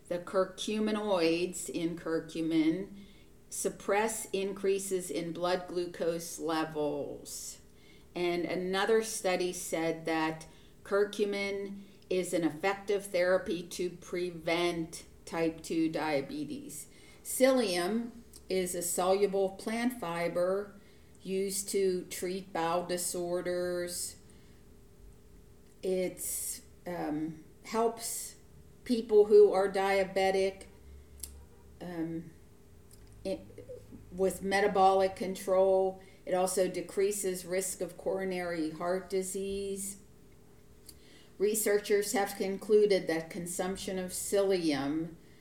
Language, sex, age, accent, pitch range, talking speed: English, female, 50-69, American, 165-195 Hz, 85 wpm